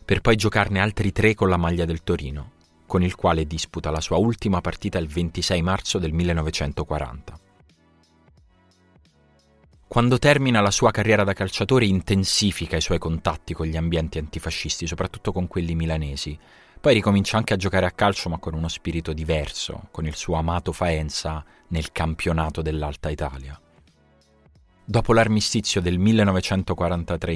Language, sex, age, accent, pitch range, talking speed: Italian, male, 30-49, native, 80-100 Hz, 145 wpm